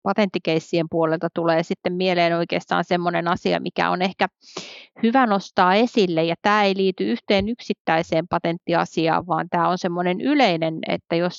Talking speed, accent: 150 wpm, native